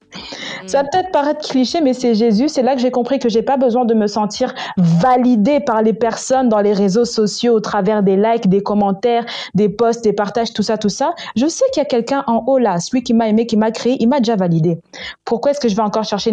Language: French